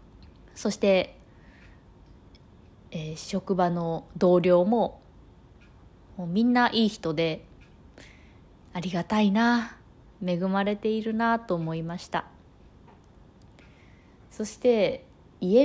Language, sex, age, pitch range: Japanese, female, 20-39, 160-200 Hz